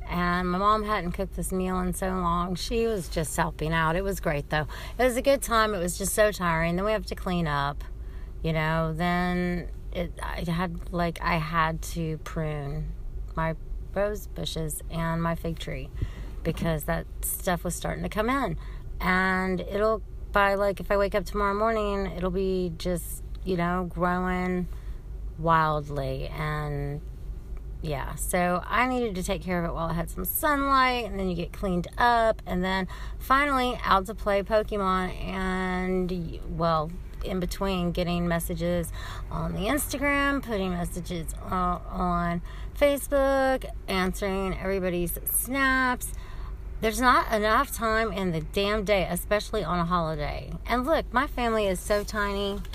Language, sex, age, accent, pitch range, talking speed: English, female, 30-49, American, 170-210 Hz, 160 wpm